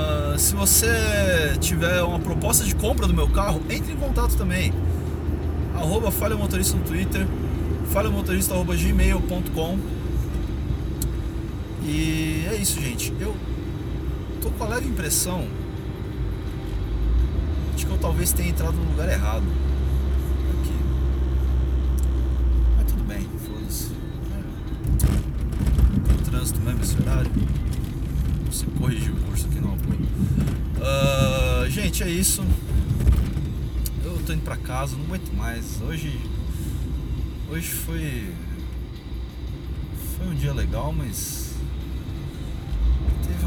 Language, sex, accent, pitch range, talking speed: Portuguese, male, Brazilian, 65-80 Hz, 100 wpm